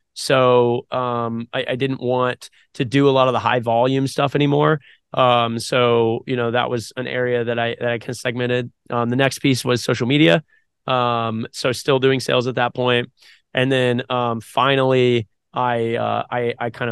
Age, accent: 20-39, American